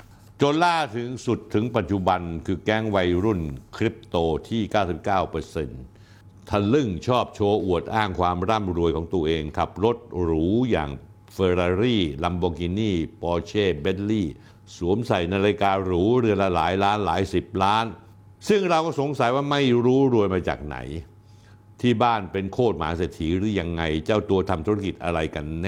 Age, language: 60-79, Thai